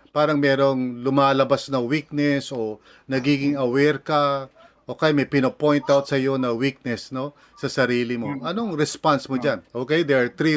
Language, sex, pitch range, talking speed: English, male, 140-185 Hz, 165 wpm